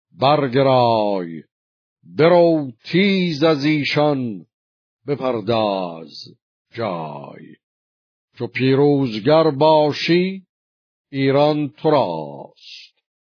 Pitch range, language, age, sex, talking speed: 115-150 Hz, Persian, 50-69, male, 55 wpm